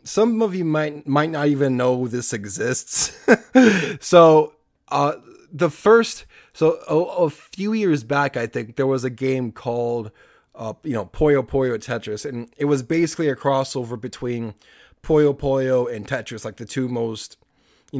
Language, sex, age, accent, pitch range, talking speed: English, male, 20-39, American, 120-155 Hz, 165 wpm